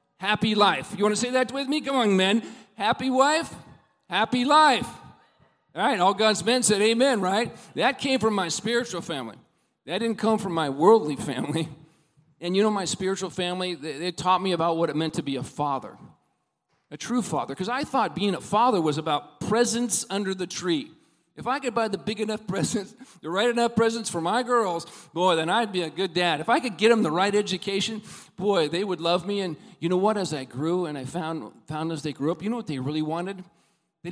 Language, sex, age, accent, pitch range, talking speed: English, male, 40-59, American, 160-220 Hz, 220 wpm